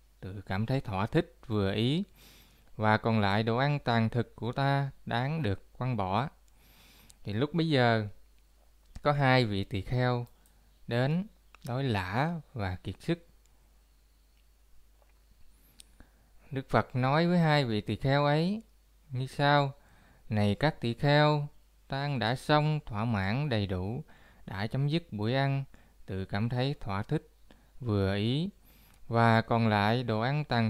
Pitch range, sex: 105-145 Hz, male